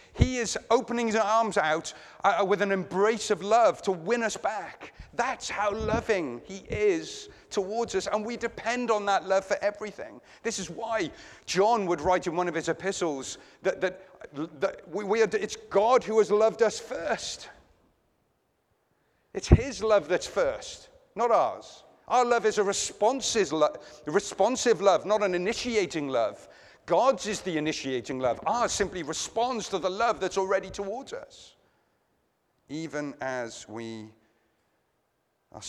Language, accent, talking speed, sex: English, British, 155 wpm, male